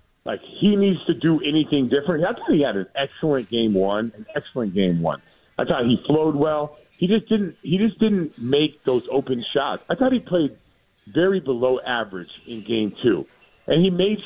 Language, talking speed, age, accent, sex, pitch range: English, 200 wpm, 40-59, American, male, 130-195 Hz